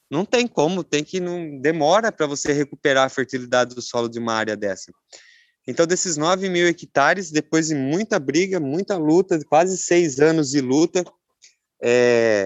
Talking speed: 170 wpm